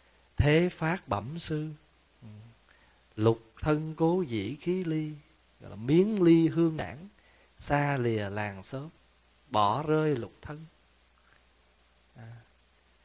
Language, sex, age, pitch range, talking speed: Vietnamese, male, 20-39, 100-150 Hz, 115 wpm